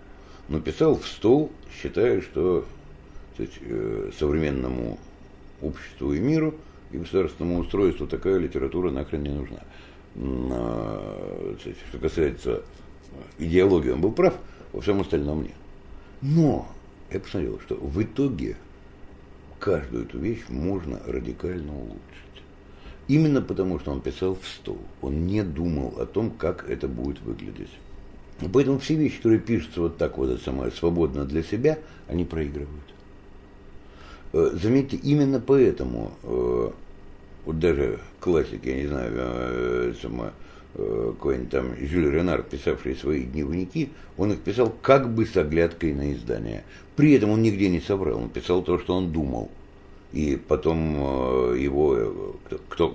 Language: Russian